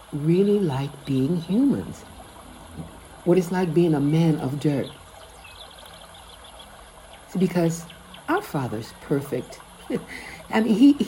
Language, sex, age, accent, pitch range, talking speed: English, female, 60-79, American, 155-225 Hz, 95 wpm